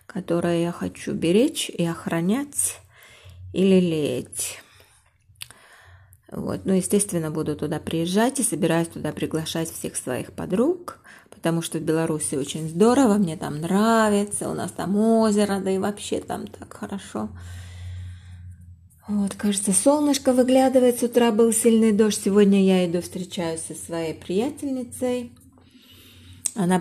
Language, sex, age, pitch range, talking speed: Russian, female, 20-39, 170-220 Hz, 130 wpm